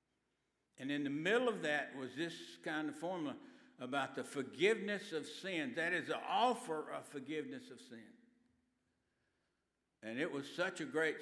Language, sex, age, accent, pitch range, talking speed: English, male, 60-79, American, 145-225 Hz, 160 wpm